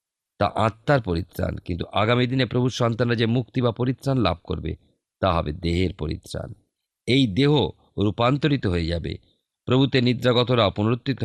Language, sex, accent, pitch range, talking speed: Bengali, male, native, 90-120 Hz, 140 wpm